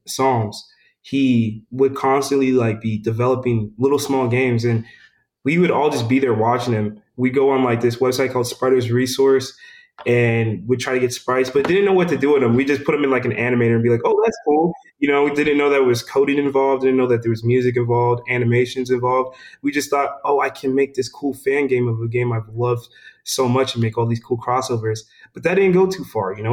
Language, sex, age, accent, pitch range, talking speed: English, male, 20-39, American, 120-135 Hz, 240 wpm